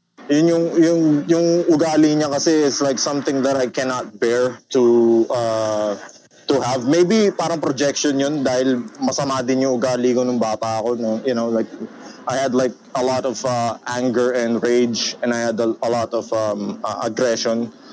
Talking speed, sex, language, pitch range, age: 185 wpm, male, Filipino, 120-140 Hz, 20-39